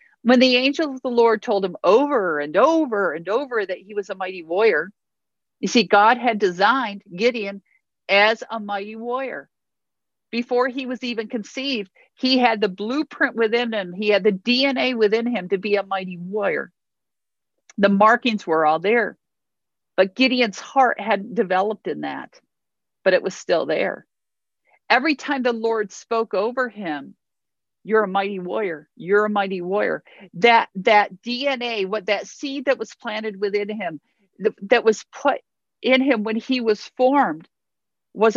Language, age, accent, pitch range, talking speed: English, 50-69, American, 200-250 Hz, 165 wpm